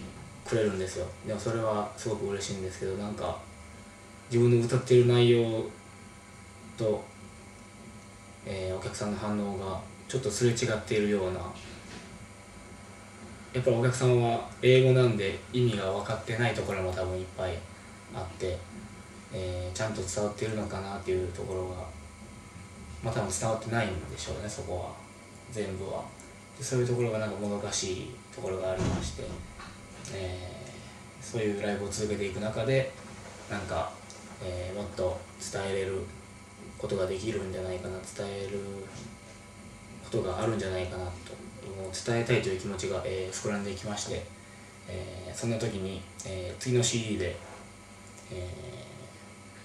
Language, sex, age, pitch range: Japanese, male, 20-39, 95-110 Hz